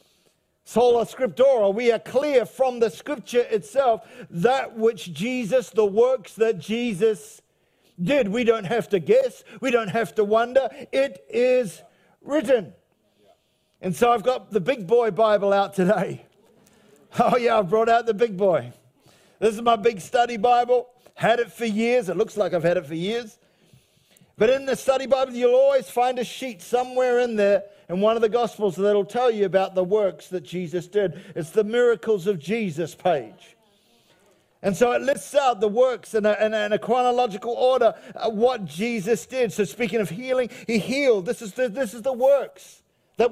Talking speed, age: 180 wpm, 50-69